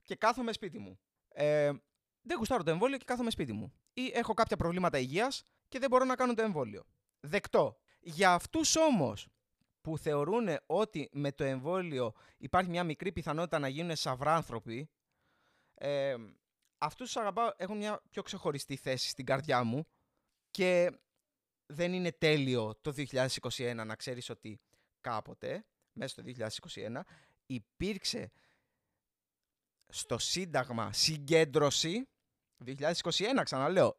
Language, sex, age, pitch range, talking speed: Greek, male, 20-39, 135-210 Hz, 130 wpm